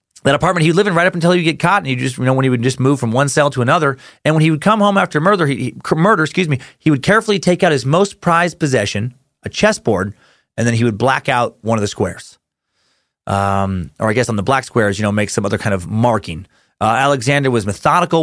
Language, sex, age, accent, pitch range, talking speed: English, male, 30-49, American, 110-150 Hz, 265 wpm